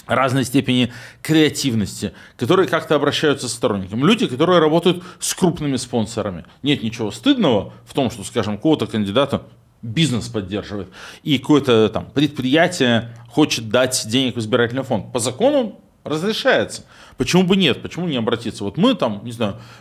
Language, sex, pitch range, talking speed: Russian, male, 120-170 Hz, 150 wpm